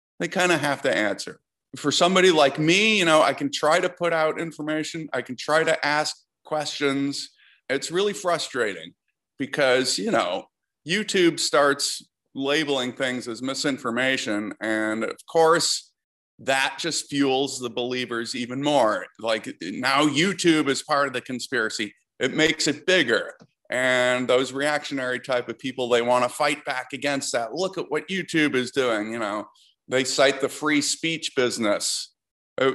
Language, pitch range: English, 125-155 Hz